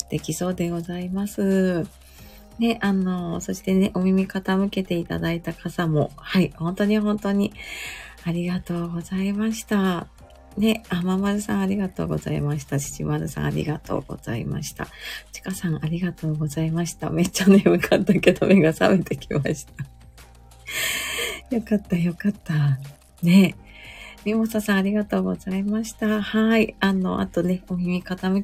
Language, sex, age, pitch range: Japanese, female, 30-49, 155-205 Hz